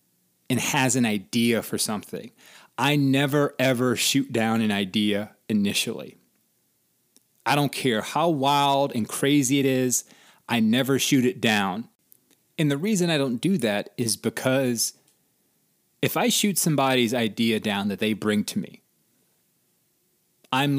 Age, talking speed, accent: 30-49, 140 wpm, American